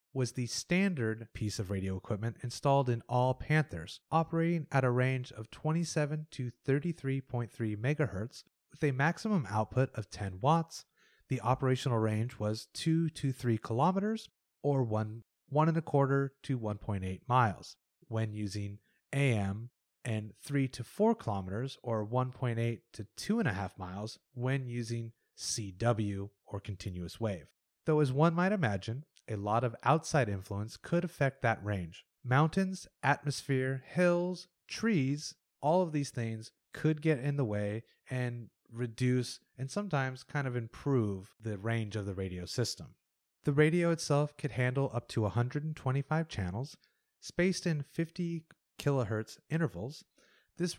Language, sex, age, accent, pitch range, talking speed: English, male, 30-49, American, 110-155 Hz, 140 wpm